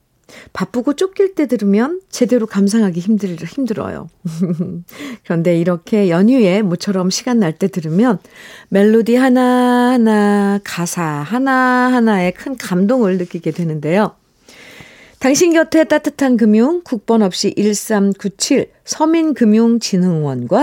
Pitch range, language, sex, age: 175-245 Hz, Korean, female, 50-69